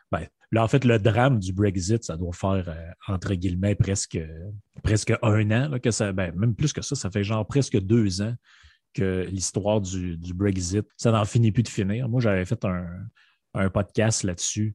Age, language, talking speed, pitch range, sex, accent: 30-49, French, 205 wpm, 95-115 Hz, male, Canadian